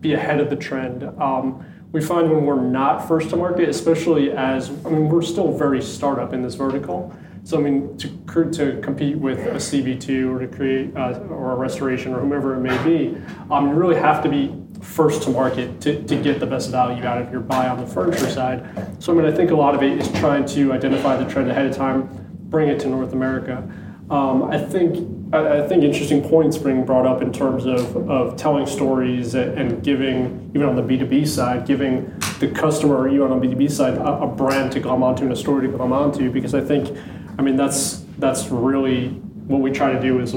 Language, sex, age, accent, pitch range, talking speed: English, male, 30-49, American, 130-145 Hz, 225 wpm